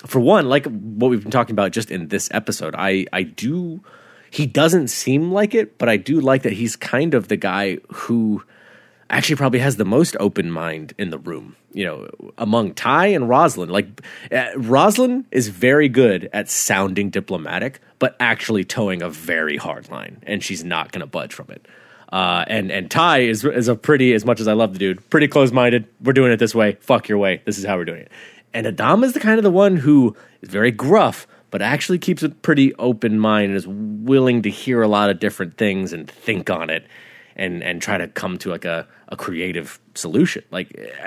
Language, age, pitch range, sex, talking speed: English, 30-49, 100-140 Hz, male, 215 wpm